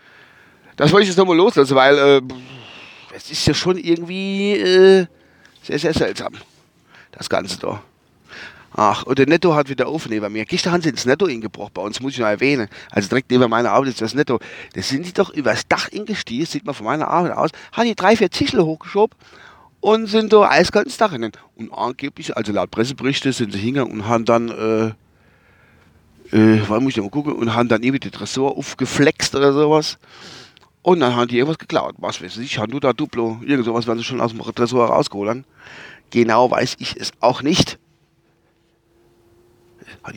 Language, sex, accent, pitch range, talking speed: German, male, German, 110-170 Hz, 195 wpm